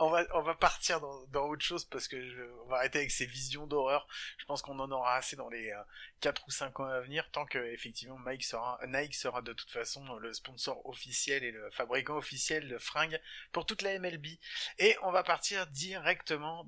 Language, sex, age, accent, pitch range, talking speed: French, male, 30-49, French, 130-170 Hz, 220 wpm